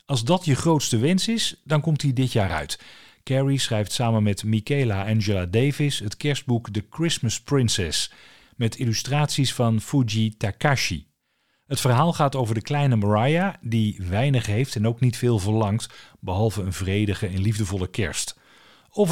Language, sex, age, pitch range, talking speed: Dutch, male, 40-59, 105-140 Hz, 160 wpm